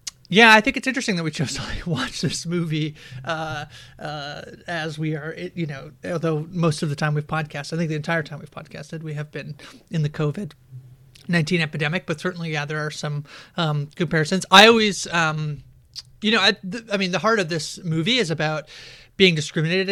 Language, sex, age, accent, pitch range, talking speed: English, male, 30-49, American, 150-180 Hz, 200 wpm